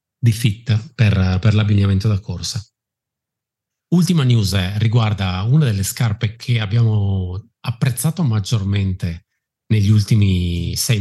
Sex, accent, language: male, native, Italian